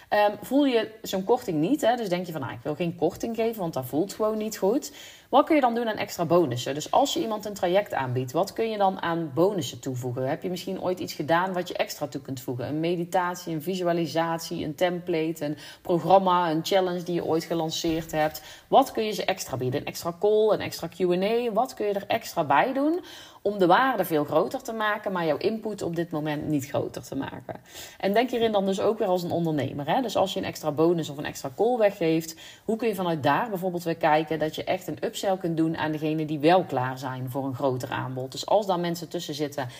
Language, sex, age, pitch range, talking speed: Dutch, female, 30-49, 155-200 Hz, 240 wpm